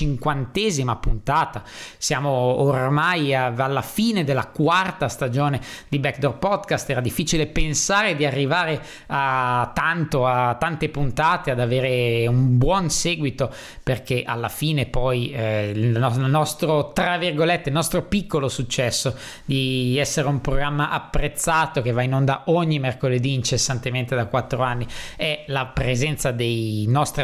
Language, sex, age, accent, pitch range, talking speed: Italian, male, 20-39, native, 130-160 Hz, 135 wpm